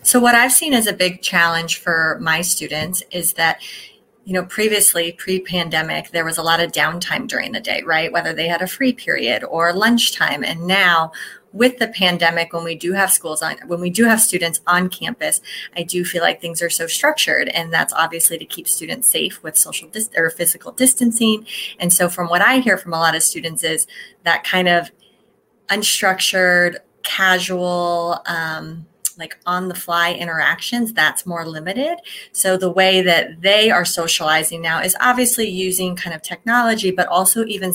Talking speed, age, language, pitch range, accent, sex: 185 wpm, 30-49, English, 170-200 Hz, American, female